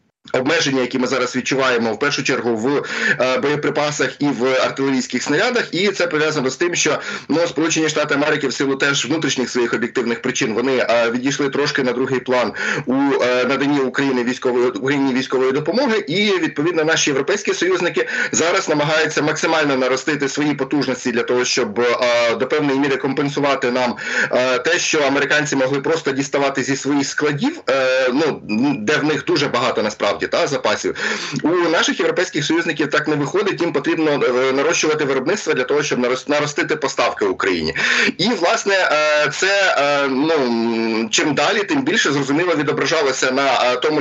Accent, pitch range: native, 130-155 Hz